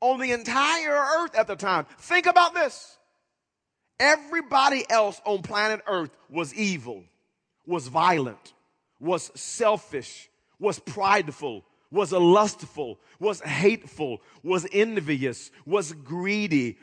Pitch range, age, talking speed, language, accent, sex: 175-245 Hz, 40-59, 110 wpm, English, American, male